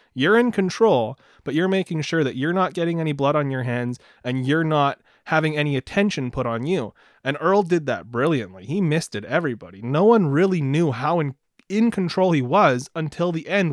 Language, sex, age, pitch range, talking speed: English, male, 30-49, 130-170 Hz, 205 wpm